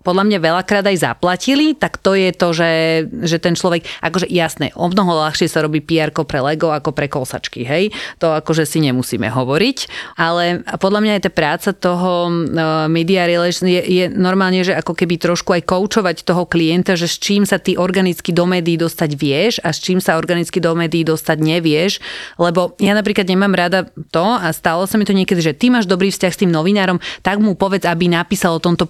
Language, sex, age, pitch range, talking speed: Slovak, female, 30-49, 160-185 Hz, 205 wpm